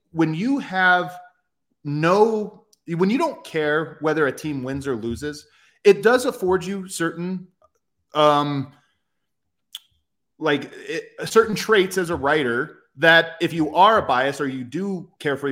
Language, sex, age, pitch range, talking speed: English, male, 30-49, 140-180 Hz, 145 wpm